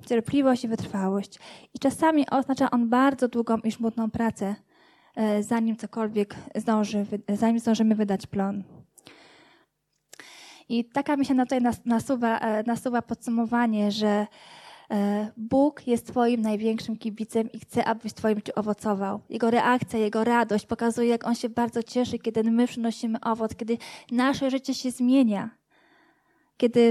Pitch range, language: 215-255 Hz, Polish